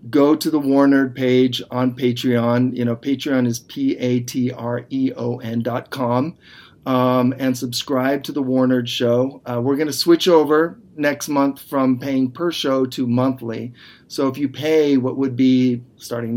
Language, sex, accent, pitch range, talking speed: English, male, American, 120-135 Hz, 160 wpm